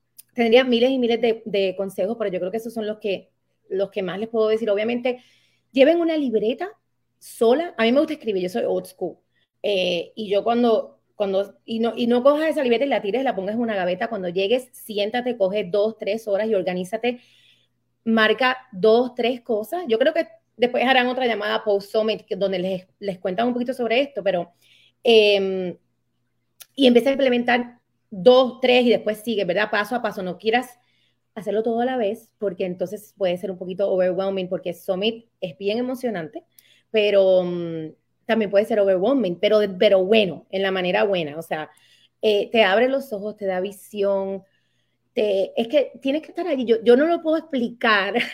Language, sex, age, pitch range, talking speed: Spanish, female, 30-49, 195-245 Hz, 190 wpm